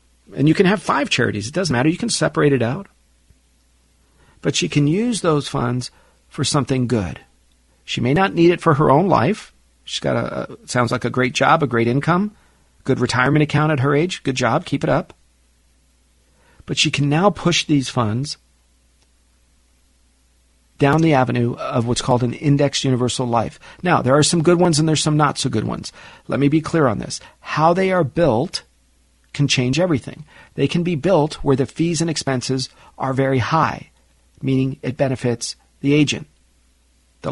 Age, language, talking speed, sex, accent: 50-69, English, 185 wpm, male, American